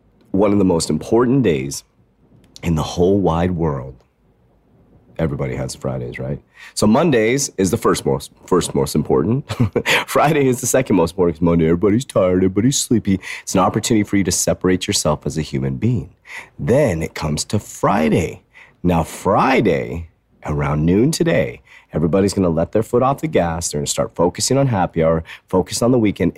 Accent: American